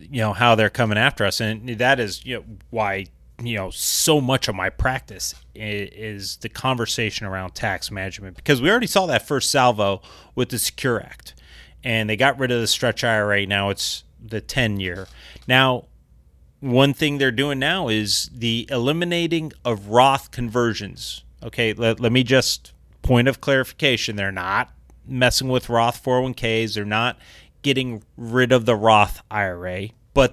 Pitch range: 105-125 Hz